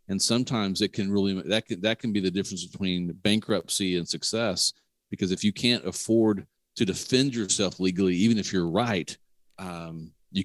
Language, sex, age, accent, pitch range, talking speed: English, male, 40-59, American, 90-110 Hz, 180 wpm